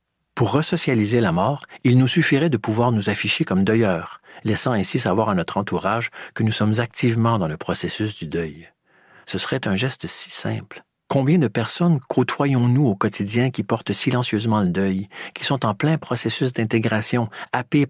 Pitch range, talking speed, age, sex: 100-125 Hz, 175 wpm, 50-69, male